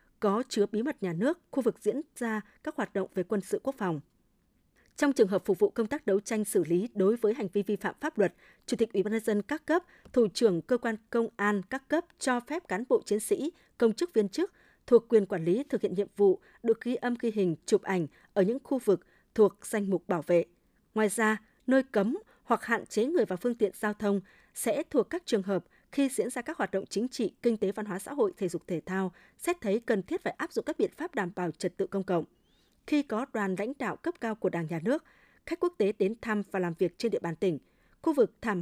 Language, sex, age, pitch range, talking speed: Vietnamese, female, 20-39, 195-255 Hz, 255 wpm